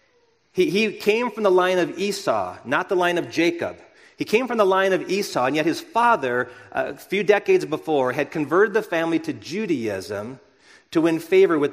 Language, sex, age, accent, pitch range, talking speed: English, male, 40-59, American, 150-190 Hz, 190 wpm